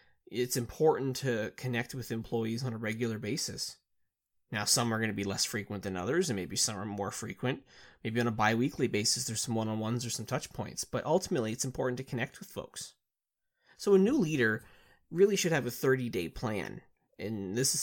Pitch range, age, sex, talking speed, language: 110-130 Hz, 20-39, male, 200 wpm, English